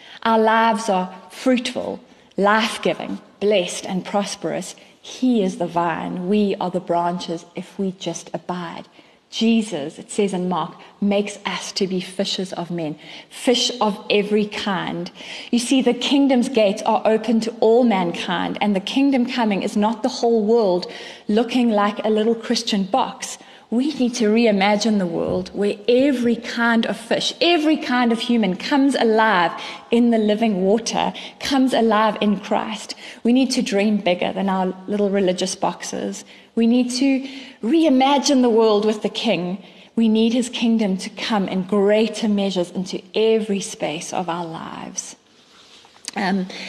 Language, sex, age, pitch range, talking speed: English, female, 30-49, 190-235 Hz, 155 wpm